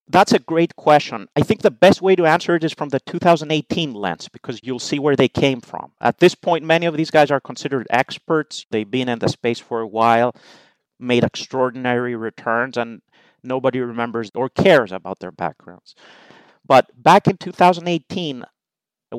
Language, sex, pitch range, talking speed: English, male, 110-145 Hz, 180 wpm